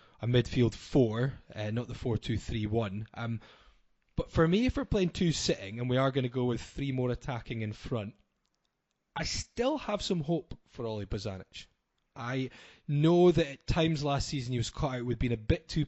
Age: 20-39